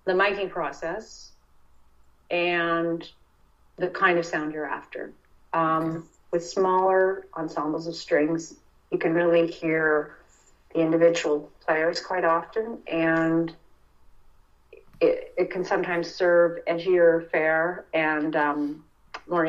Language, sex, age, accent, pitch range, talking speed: English, female, 30-49, American, 155-175 Hz, 110 wpm